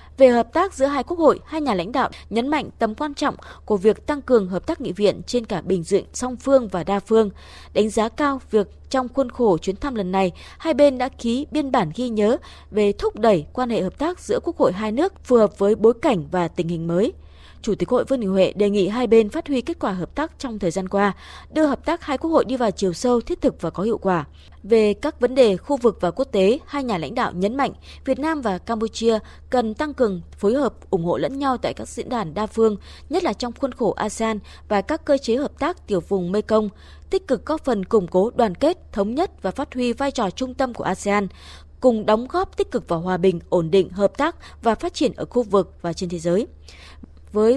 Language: Vietnamese